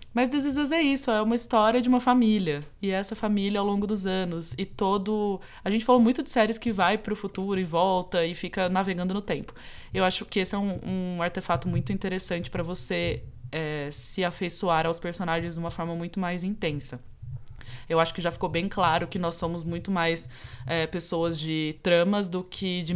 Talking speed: 205 wpm